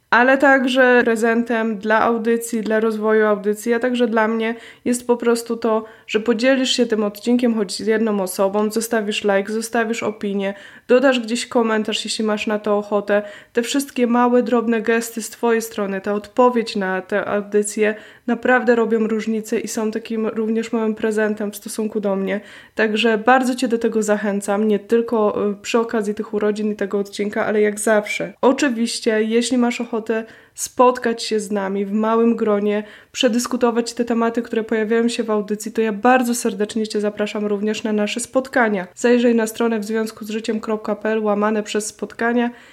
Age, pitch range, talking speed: 20-39, 215-240 Hz, 165 wpm